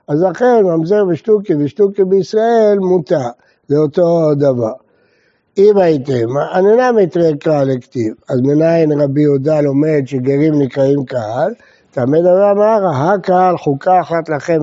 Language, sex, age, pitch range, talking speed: Hebrew, male, 60-79, 150-200 Hz, 135 wpm